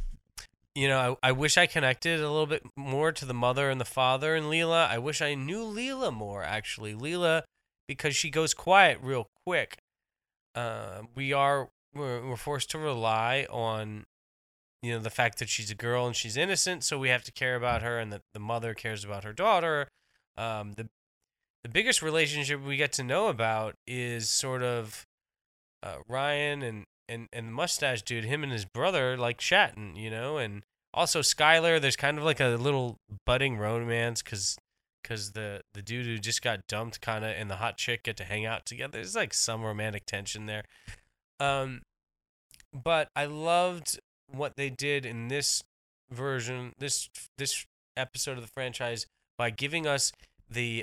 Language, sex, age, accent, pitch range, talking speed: English, male, 20-39, American, 110-140 Hz, 180 wpm